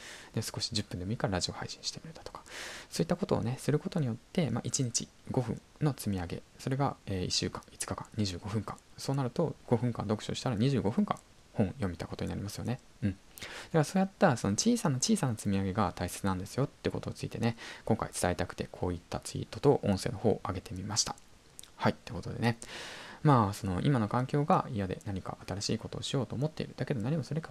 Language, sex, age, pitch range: Japanese, male, 20-39, 95-135 Hz